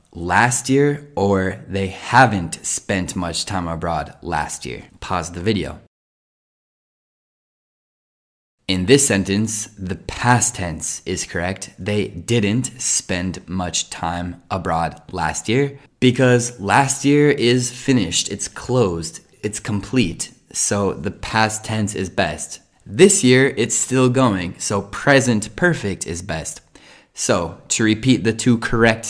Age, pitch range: 20-39, 90-120 Hz